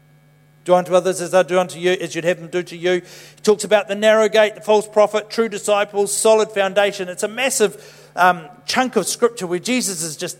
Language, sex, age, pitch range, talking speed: English, male, 50-69, 150-210 Hz, 225 wpm